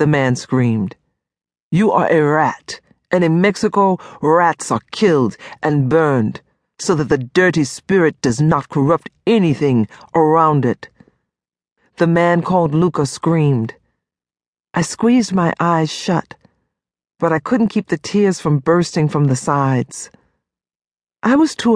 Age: 50-69